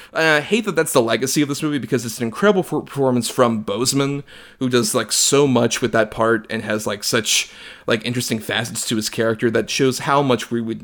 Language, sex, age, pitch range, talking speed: English, male, 30-49, 115-140 Hz, 220 wpm